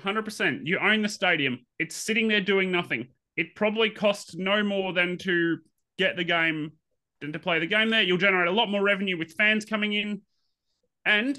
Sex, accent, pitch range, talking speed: male, Australian, 170-210 Hz, 195 wpm